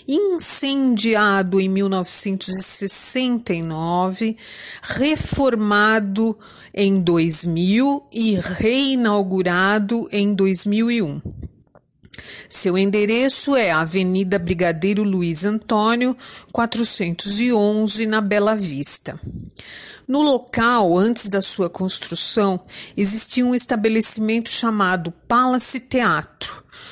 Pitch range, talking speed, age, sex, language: 195-240 Hz, 75 wpm, 40-59, female, Portuguese